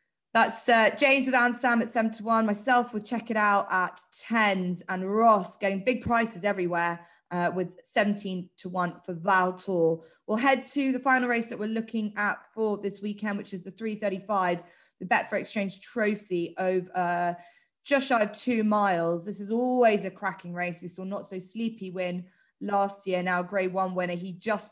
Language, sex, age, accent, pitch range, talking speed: English, female, 20-39, British, 180-210 Hz, 190 wpm